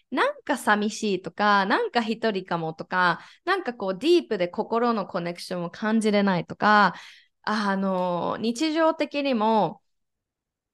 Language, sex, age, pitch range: Japanese, female, 20-39, 190-295 Hz